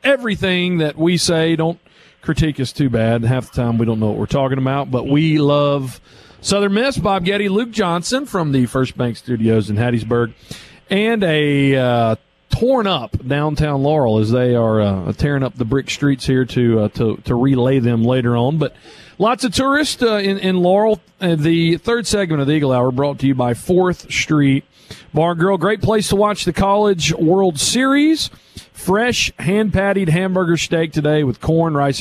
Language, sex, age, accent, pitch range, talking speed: English, male, 40-59, American, 125-185 Hz, 185 wpm